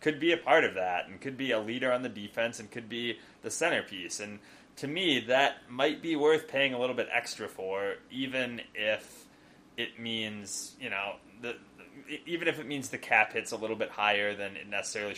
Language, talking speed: English, 210 wpm